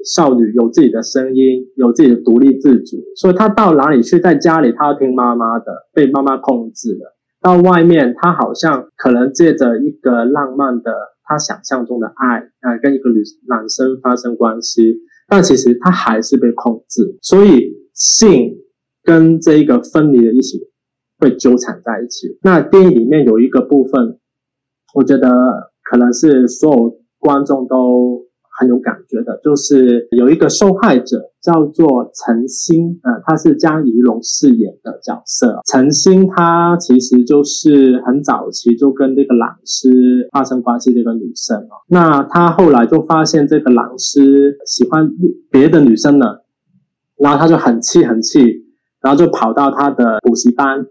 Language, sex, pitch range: Chinese, male, 120-160 Hz